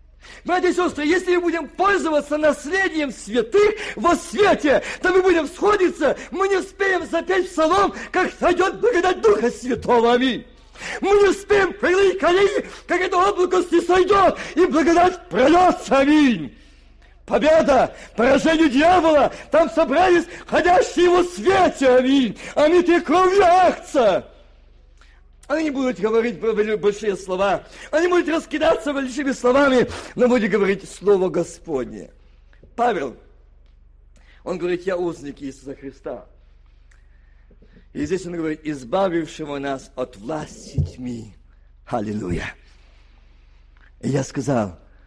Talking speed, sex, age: 120 wpm, male, 50-69